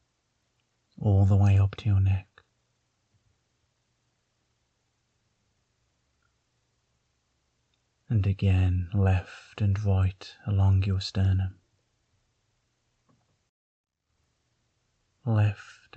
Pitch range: 95-115 Hz